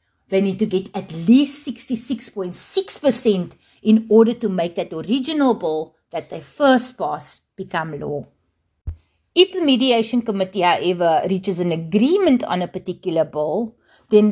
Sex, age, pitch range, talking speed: female, 30-49, 180-245 Hz, 140 wpm